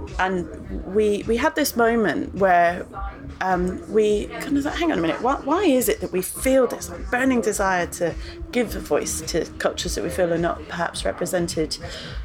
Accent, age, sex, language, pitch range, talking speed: British, 30-49, female, English, 170-210 Hz, 190 wpm